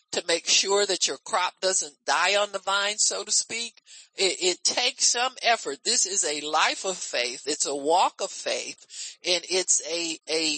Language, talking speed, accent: English, 210 wpm, American